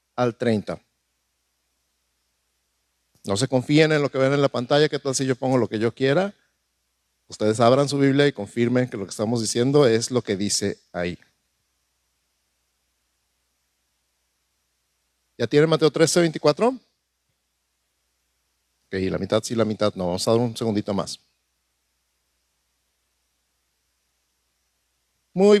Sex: male